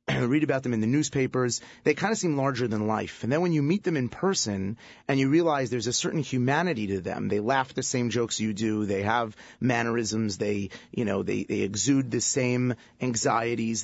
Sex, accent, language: male, American, English